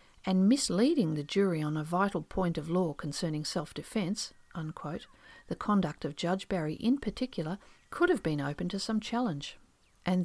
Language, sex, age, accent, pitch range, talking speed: English, female, 50-69, Australian, 165-215 Hz, 160 wpm